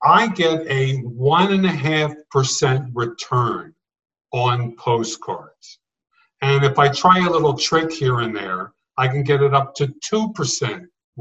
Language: English